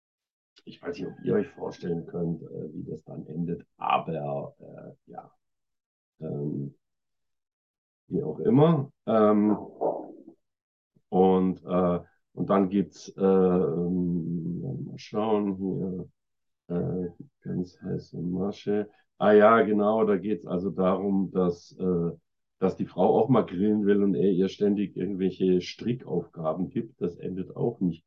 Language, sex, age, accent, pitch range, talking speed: English, male, 50-69, German, 90-105 Hz, 135 wpm